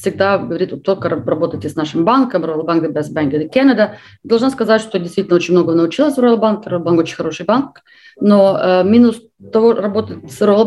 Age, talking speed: 30-49, 195 wpm